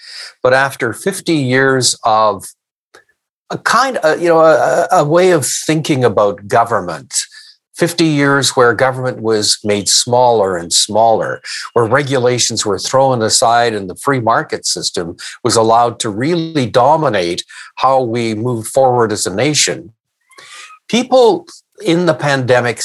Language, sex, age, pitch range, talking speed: English, male, 60-79, 120-155 Hz, 135 wpm